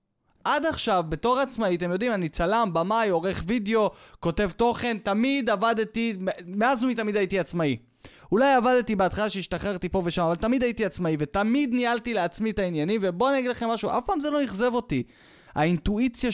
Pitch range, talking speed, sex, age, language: 175-250 Hz, 175 wpm, male, 20-39, Hebrew